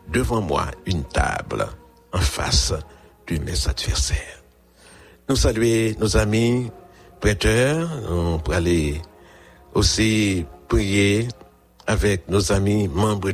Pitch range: 85-105 Hz